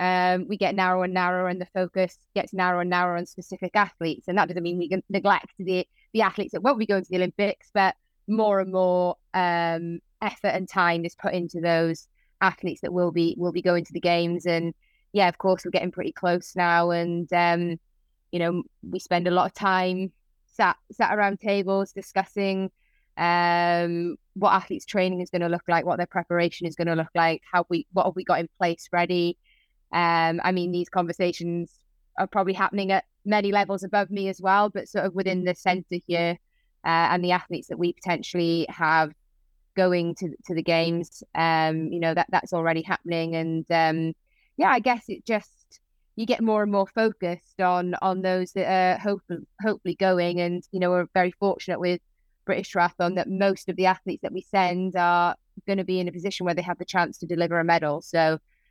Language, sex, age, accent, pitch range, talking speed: English, female, 20-39, British, 170-190 Hz, 205 wpm